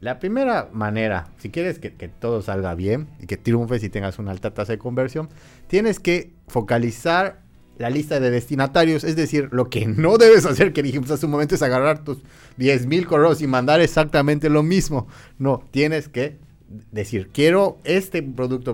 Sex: male